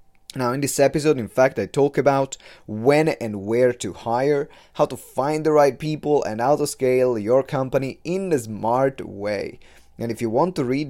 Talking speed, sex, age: 200 wpm, male, 30-49